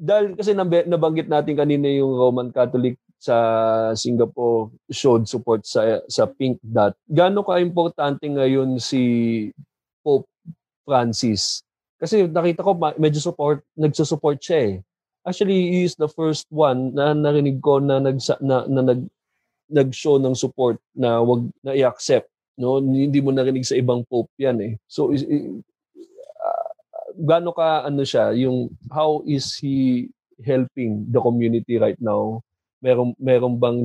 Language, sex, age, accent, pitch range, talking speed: Filipino, male, 20-39, native, 115-150 Hz, 140 wpm